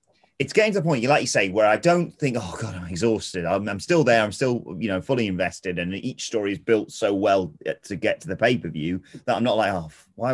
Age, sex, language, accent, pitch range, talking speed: 30-49, male, English, British, 95-130 Hz, 255 wpm